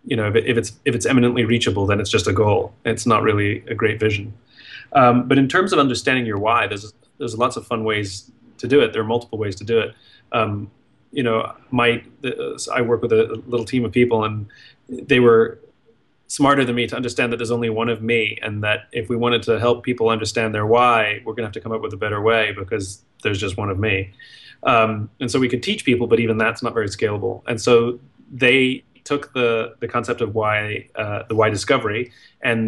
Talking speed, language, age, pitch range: 230 wpm, English, 30-49, 105-120 Hz